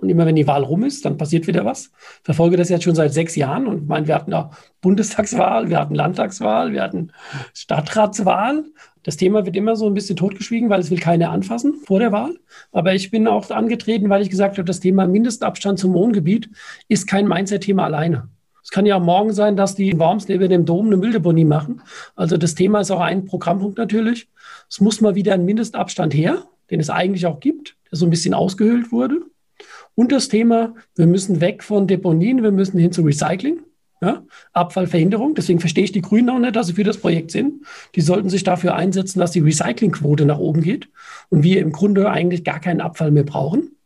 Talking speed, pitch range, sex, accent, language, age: 215 wpm, 175-215 Hz, male, German, German, 50-69